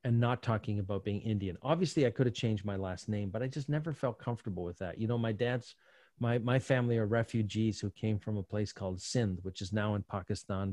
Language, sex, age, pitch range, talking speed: English, male, 40-59, 105-125 Hz, 240 wpm